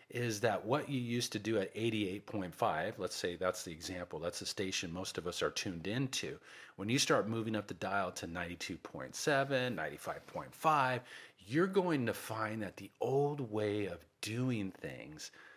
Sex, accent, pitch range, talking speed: male, American, 100-130 Hz, 170 wpm